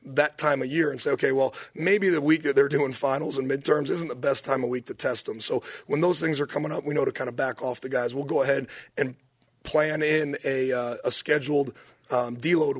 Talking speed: 255 wpm